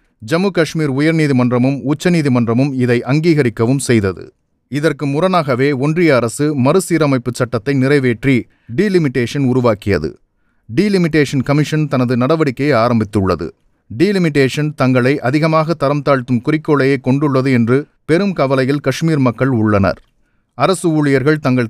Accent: native